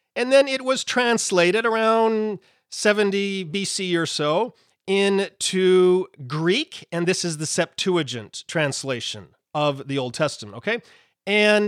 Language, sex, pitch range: English, male, 155-210 Hz